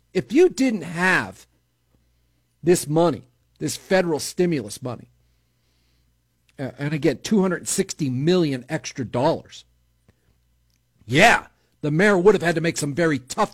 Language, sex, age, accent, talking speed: English, male, 50-69, American, 120 wpm